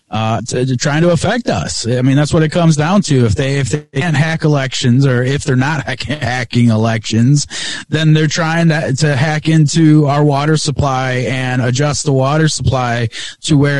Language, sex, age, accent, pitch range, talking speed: English, male, 30-49, American, 130-155 Hz, 195 wpm